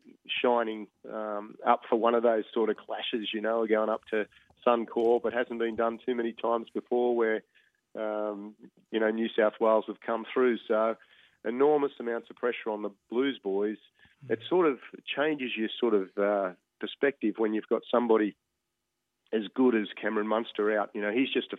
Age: 40-59